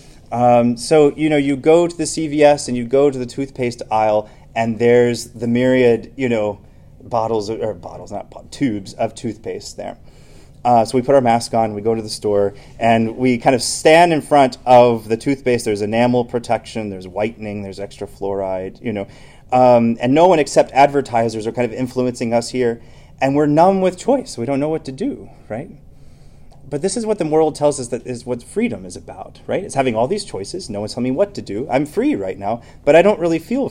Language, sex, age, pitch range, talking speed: English, male, 30-49, 110-140 Hz, 215 wpm